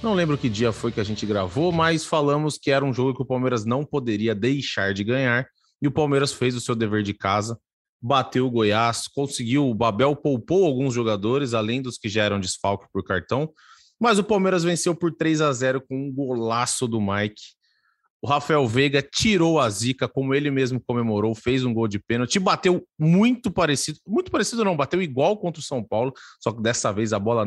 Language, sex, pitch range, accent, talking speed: Portuguese, male, 115-155 Hz, Brazilian, 210 wpm